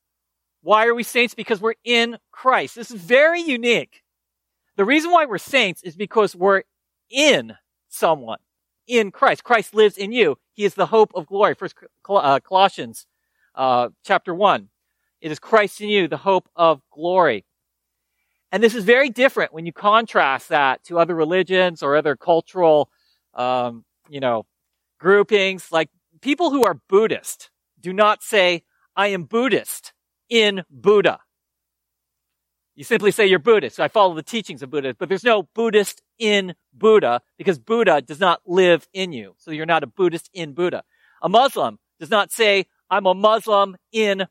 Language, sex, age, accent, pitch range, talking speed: English, male, 40-59, American, 155-220 Hz, 165 wpm